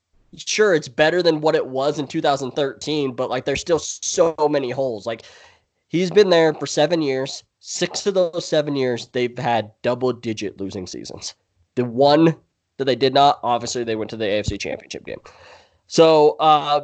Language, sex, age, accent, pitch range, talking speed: English, male, 20-39, American, 120-145 Hz, 180 wpm